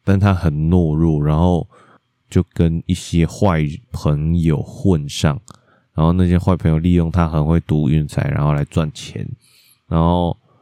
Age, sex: 20-39, male